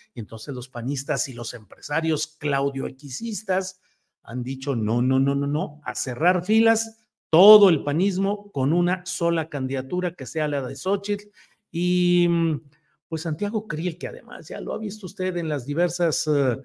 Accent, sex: Mexican, male